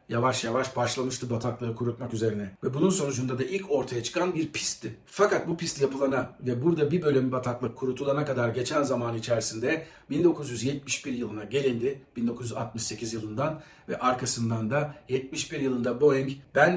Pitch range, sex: 120-150 Hz, male